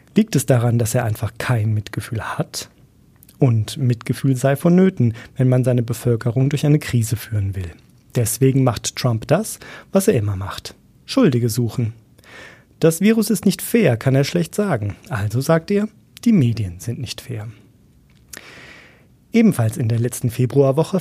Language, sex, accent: German, male, German